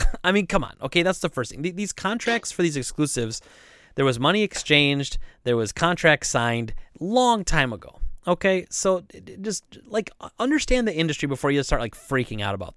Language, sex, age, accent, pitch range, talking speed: English, male, 30-49, American, 120-170 Hz, 185 wpm